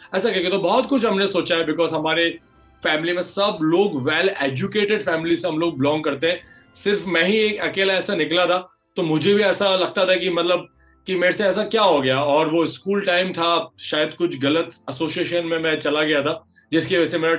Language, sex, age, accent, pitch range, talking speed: Hindi, male, 30-49, native, 155-190 Hz, 215 wpm